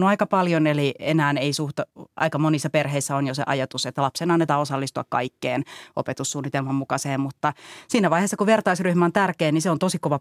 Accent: native